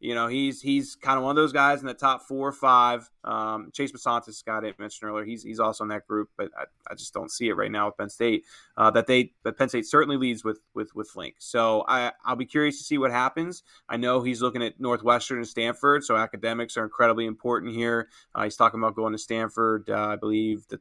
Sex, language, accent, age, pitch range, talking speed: male, English, American, 20-39, 110-130 Hz, 250 wpm